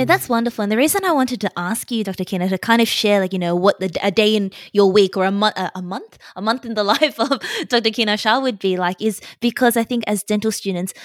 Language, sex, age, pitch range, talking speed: English, female, 20-39, 175-220 Hz, 265 wpm